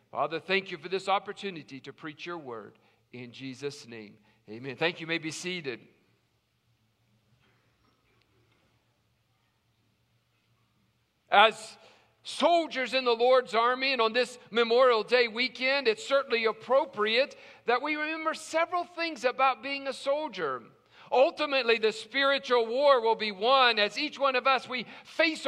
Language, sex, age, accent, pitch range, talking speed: English, male, 50-69, American, 200-275 Hz, 135 wpm